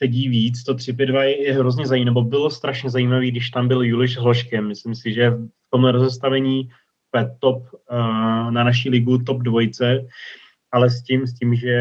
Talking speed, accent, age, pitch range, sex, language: 175 wpm, native, 30-49, 115-125 Hz, male, Czech